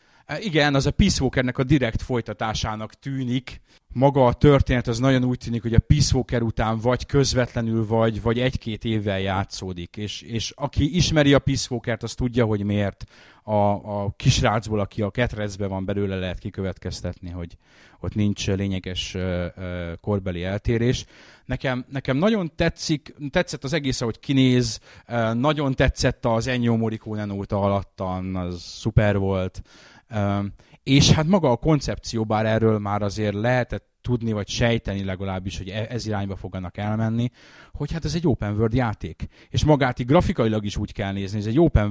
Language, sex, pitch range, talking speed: Hungarian, male, 100-125 Hz, 155 wpm